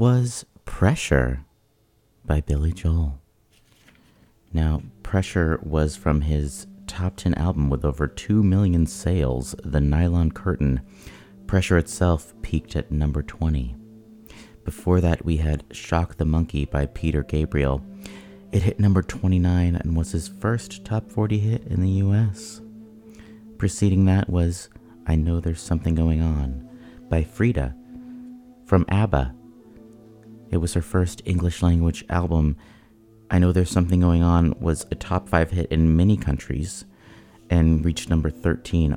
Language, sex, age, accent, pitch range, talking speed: English, male, 30-49, American, 75-105 Hz, 135 wpm